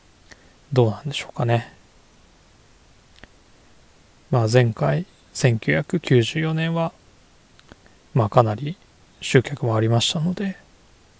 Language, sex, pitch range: Japanese, male, 110-145 Hz